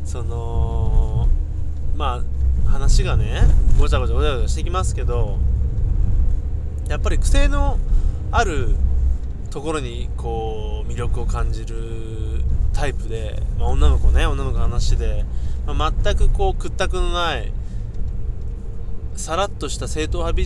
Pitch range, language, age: 75-115 Hz, Japanese, 20-39